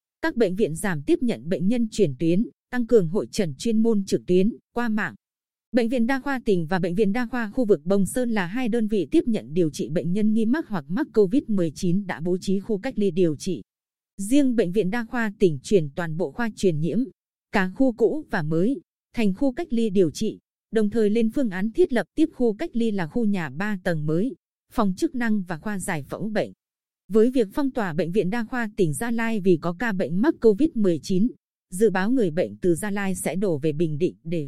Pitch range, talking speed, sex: 185-235 Hz, 235 wpm, female